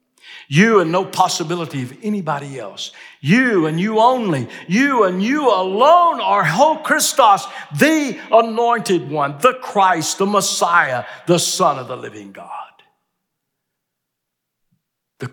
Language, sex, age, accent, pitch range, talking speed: English, male, 60-79, American, 150-205 Hz, 125 wpm